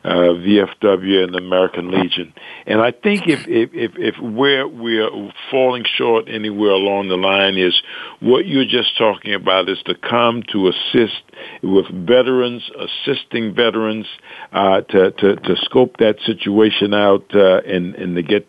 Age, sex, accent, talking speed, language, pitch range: 60-79, male, American, 160 wpm, English, 100-120 Hz